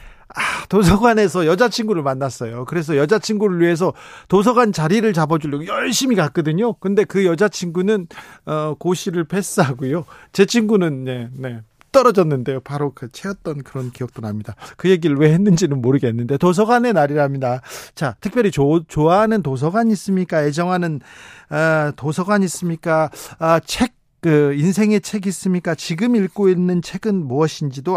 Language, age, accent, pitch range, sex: Korean, 40-59, native, 140-195 Hz, male